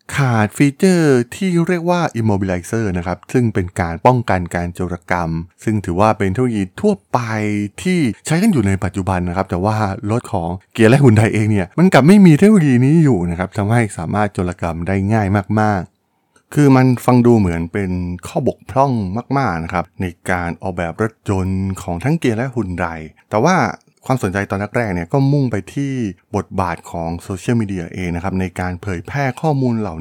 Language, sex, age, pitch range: Thai, male, 20-39, 95-125 Hz